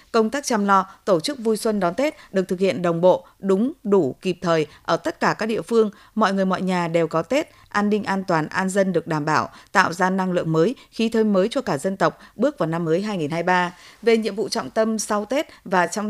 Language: Vietnamese